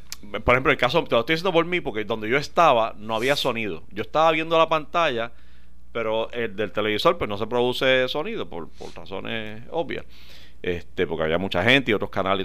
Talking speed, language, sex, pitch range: 205 wpm, Spanish, male, 110-175 Hz